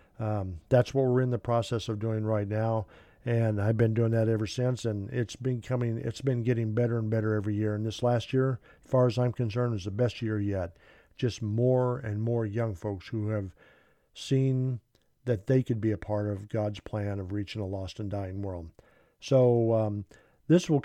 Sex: male